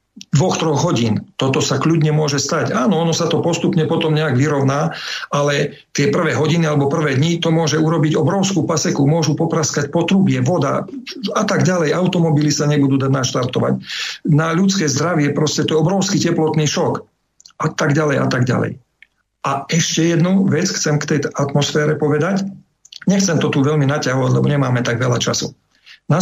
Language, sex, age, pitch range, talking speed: Slovak, male, 50-69, 135-165 Hz, 170 wpm